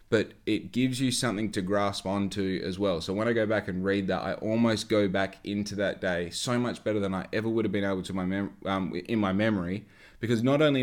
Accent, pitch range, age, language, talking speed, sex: Australian, 100-115 Hz, 20-39, English, 250 wpm, male